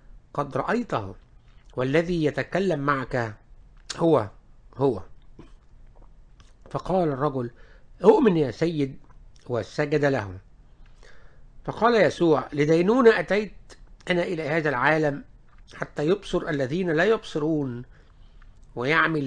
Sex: male